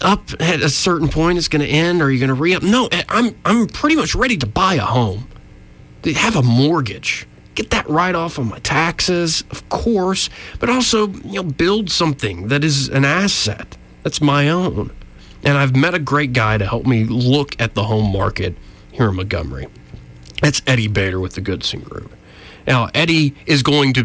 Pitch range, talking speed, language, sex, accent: 105-150 Hz, 195 wpm, English, male, American